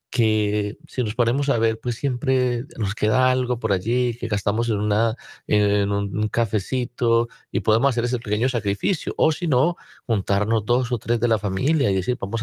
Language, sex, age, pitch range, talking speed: Spanish, male, 40-59, 100-125 Hz, 190 wpm